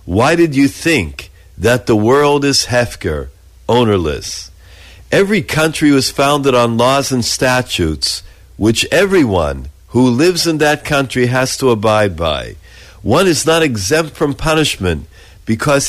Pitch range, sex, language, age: 90-150 Hz, male, English, 50-69